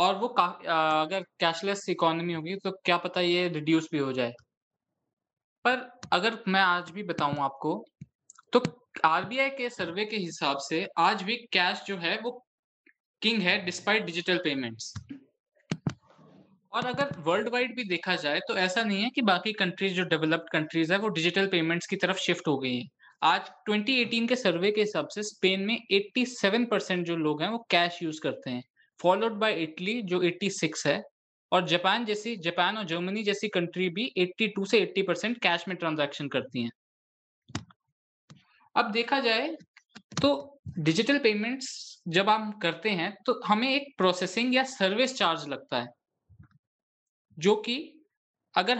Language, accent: Hindi, native